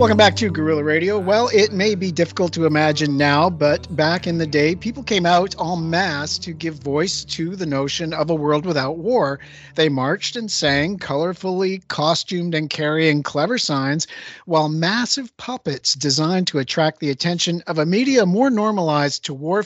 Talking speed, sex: 180 wpm, male